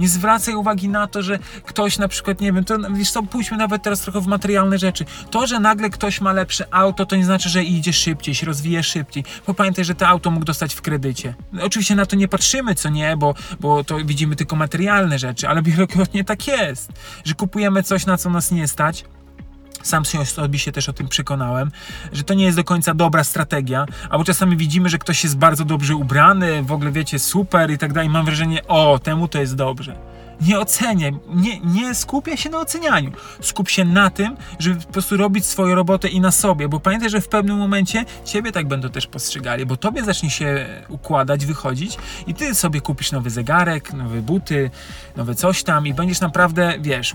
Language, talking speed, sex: Polish, 205 wpm, male